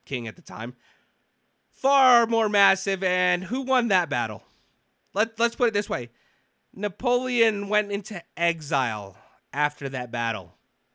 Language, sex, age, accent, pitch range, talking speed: English, male, 30-49, American, 150-220 Hz, 135 wpm